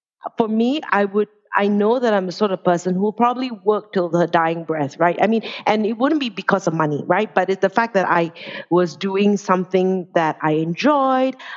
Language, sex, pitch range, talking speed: English, female, 175-225 Hz, 225 wpm